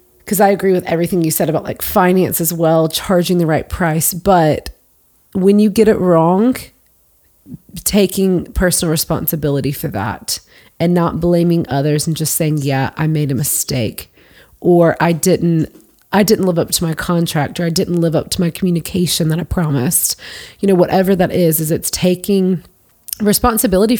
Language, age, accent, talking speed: English, 30-49, American, 175 wpm